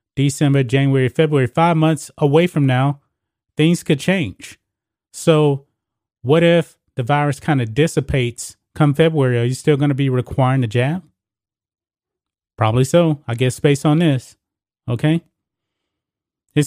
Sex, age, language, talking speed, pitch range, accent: male, 30-49, English, 140 wpm, 125-150 Hz, American